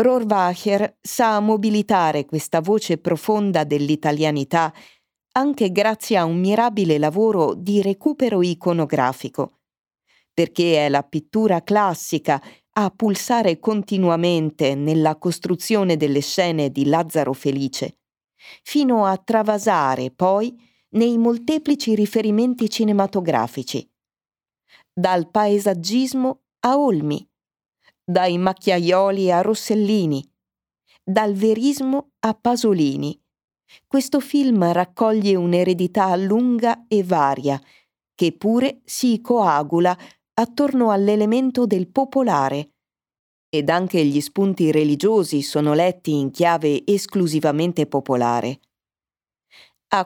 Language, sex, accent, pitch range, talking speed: Italian, female, native, 155-220 Hz, 95 wpm